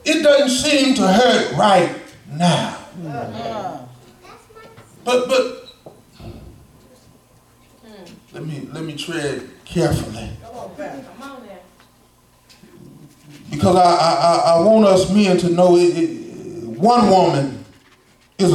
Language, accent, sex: English, American, male